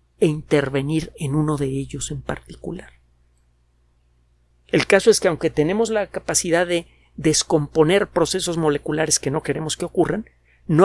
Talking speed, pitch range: 145 wpm, 125-165 Hz